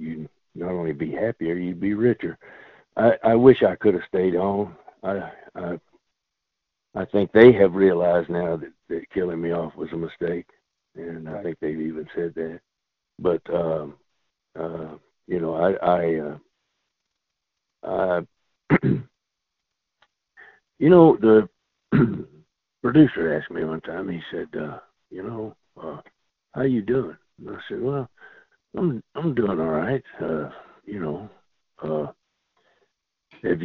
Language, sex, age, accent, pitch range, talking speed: English, male, 60-79, American, 80-100 Hz, 140 wpm